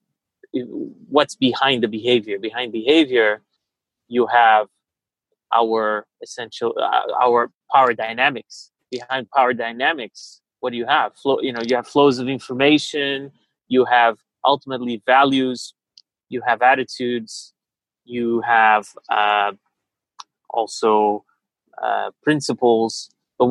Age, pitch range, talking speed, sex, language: 30-49, 115-135 Hz, 110 wpm, male, English